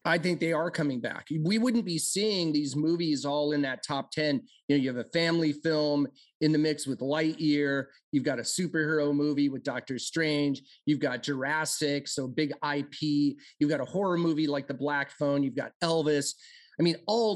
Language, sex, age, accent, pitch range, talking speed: English, male, 30-49, American, 145-170 Hz, 200 wpm